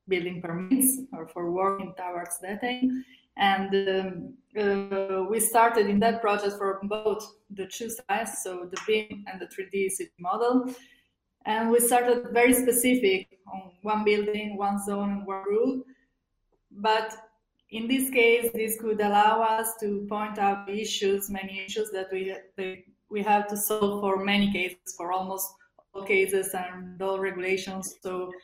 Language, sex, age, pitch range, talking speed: English, female, 20-39, 195-215 Hz, 150 wpm